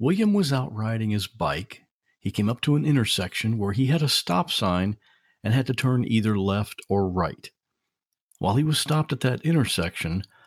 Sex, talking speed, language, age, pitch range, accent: male, 190 wpm, English, 50-69, 105-145 Hz, American